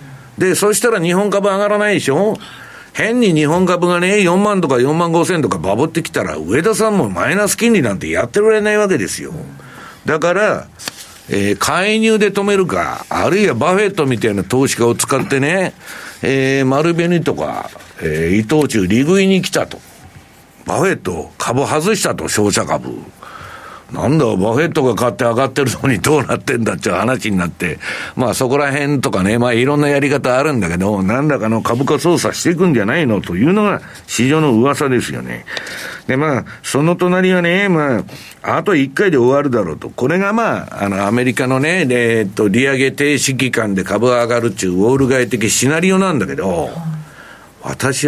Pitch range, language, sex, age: 120-180 Hz, Japanese, male, 60-79